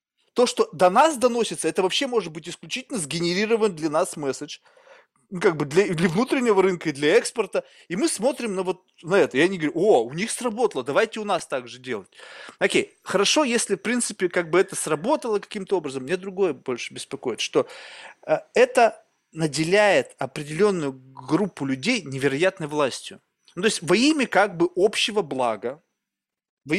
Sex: male